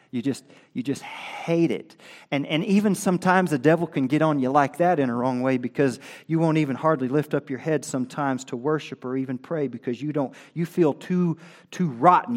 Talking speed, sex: 220 wpm, male